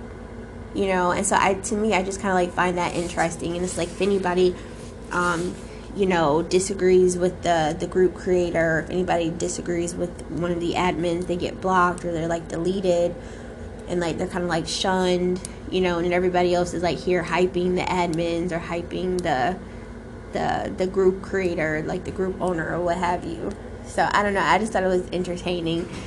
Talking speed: 200 wpm